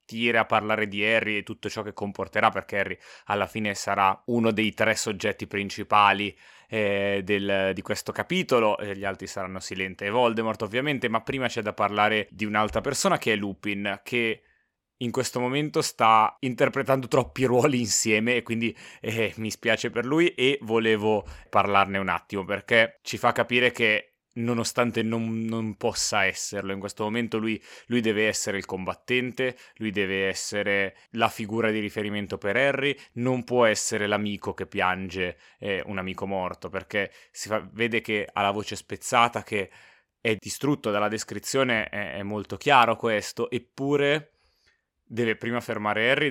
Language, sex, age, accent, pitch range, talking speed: Italian, male, 30-49, native, 100-120 Hz, 160 wpm